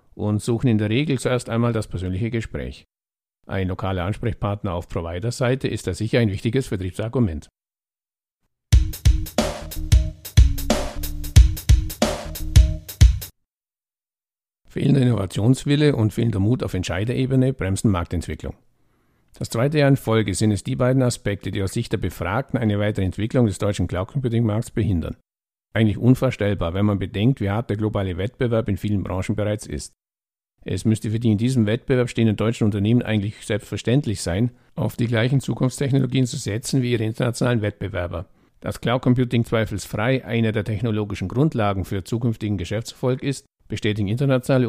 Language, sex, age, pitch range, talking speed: German, male, 60-79, 100-125 Hz, 140 wpm